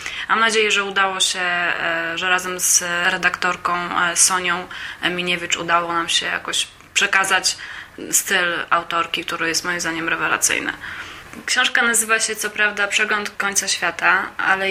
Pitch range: 180-210 Hz